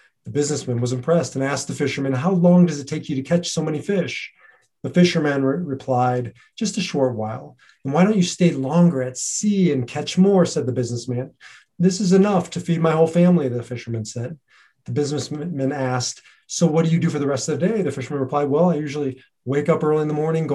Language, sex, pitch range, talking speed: English, male, 130-165 Hz, 230 wpm